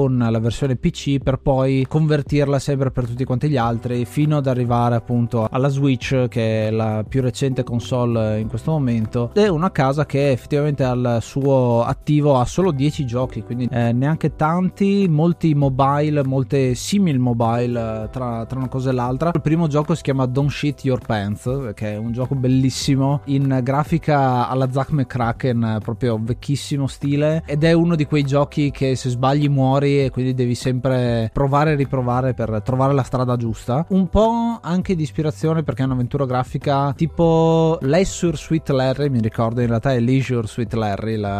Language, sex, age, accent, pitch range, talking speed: Italian, male, 20-39, native, 120-145 Hz, 175 wpm